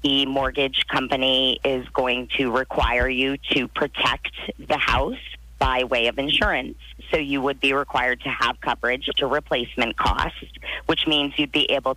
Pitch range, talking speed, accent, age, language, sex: 125-155 Hz, 160 wpm, American, 30-49, English, female